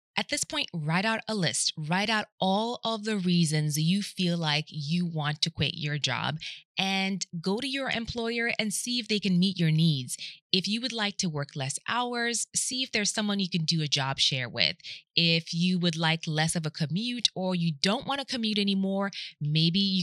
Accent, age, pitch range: American, 20-39, 160-195 Hz